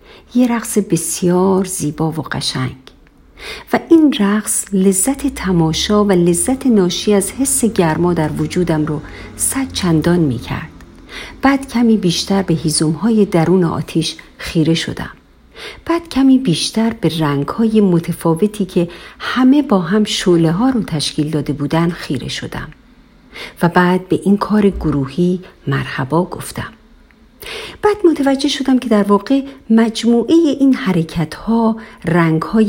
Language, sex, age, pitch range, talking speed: Persian, female, 50-69, 165-240 Hz, 125 wpm